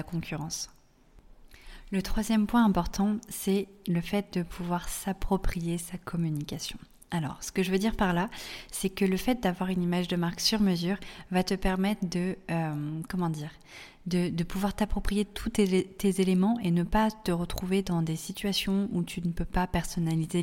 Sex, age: female, 30-49